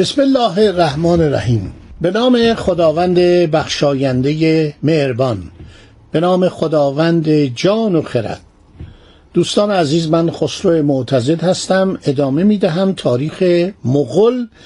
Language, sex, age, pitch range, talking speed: Persian, male, 60-79, 145-210 Hz, 105 wpm